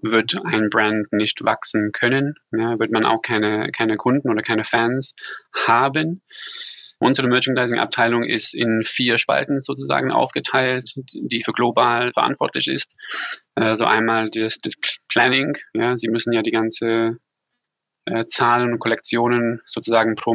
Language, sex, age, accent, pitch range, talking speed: English, male, 20-39, German, 110-125 Hz, 140 wpm